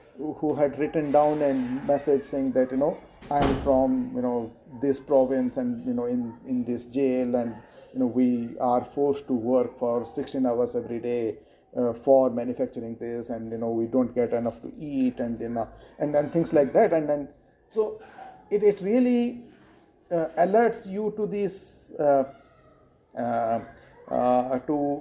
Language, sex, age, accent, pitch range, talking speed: English, male, 50-69, Indian, 125-175 Hz, 175 wpm